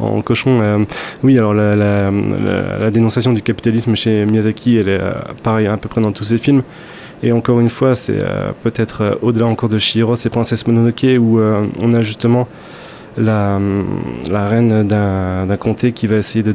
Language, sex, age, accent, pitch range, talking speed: French, male, 20-39, French, 105-120 Hz, 200 wpm